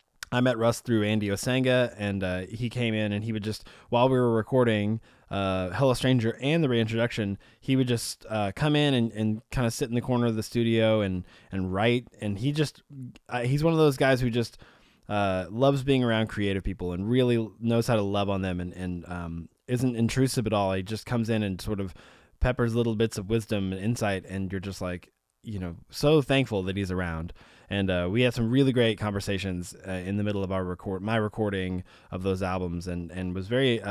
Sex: male